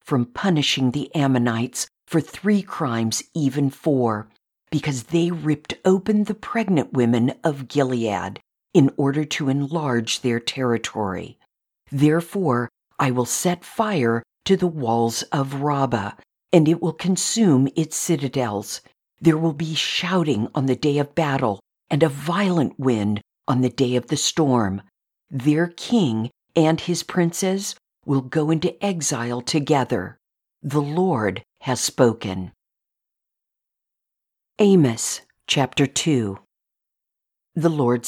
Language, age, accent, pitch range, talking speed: English, 50-69, American, 120-170 Hz, 125 wpm